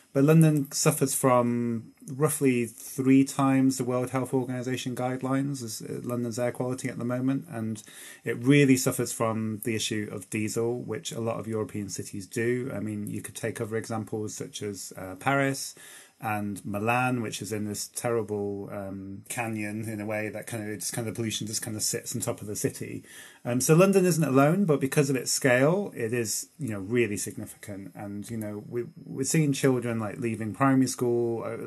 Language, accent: English, British